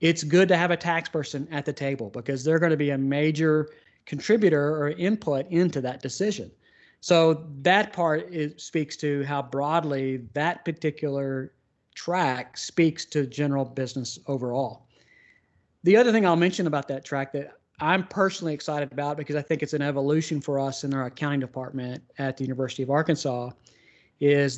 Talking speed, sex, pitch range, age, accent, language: 170 wpm, male, 135-160 Hz, 40-59, American, English